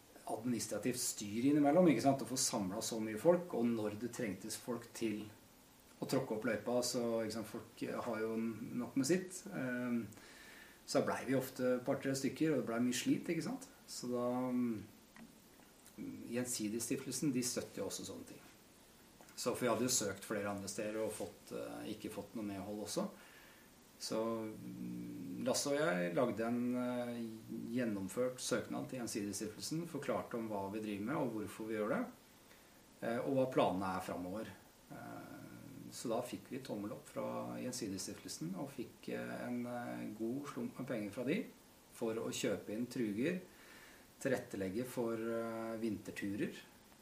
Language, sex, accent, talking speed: English, male, Norwegian, 145 wpm